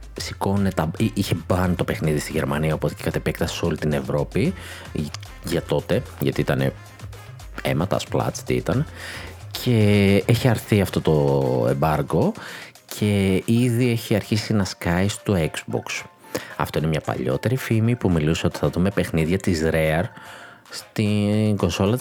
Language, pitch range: Greek, 85-120 Hz